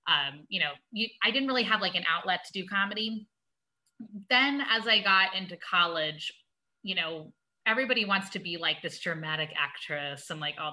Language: English